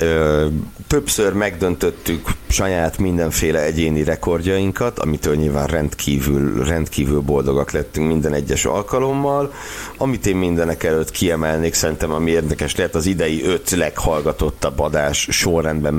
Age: 60-79